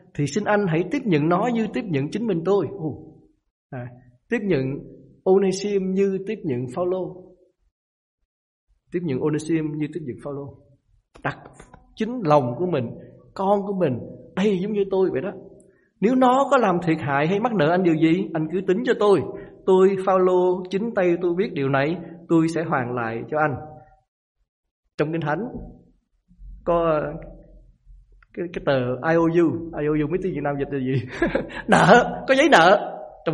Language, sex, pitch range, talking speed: Vietnamese, male, 140-185 Hz, 175 wpm